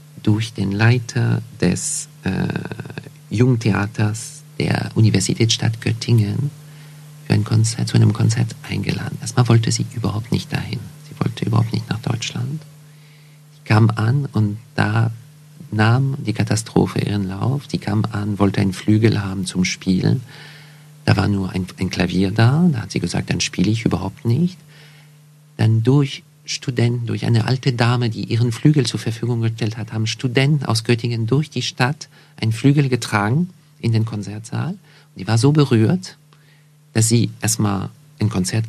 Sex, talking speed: male, 155 wpm